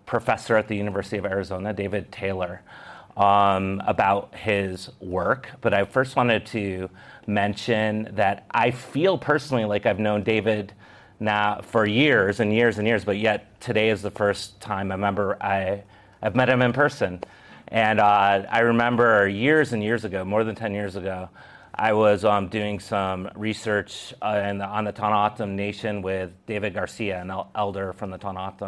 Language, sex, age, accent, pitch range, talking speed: English, male, 30-49, American, 100-110 Hz, 175 wpm